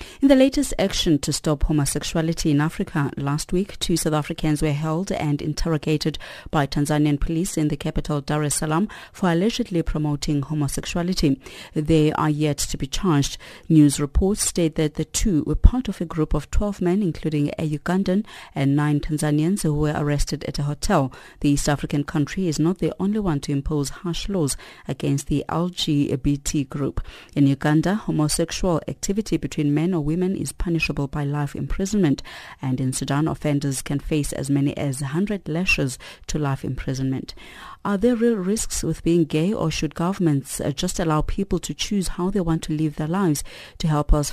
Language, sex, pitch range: English, female, 145-175 Hz